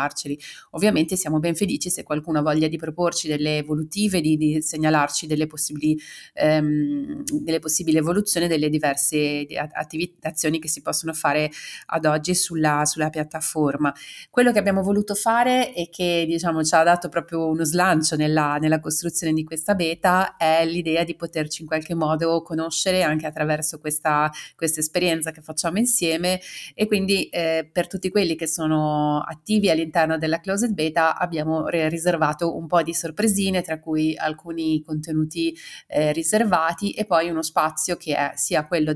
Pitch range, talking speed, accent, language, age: 155-175 Hz, 160 wpm, native, Italian, 30-49